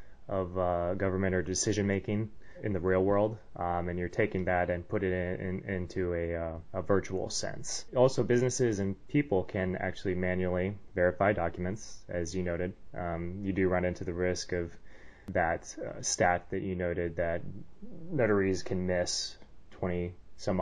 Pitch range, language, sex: 90-100 Hz, English, male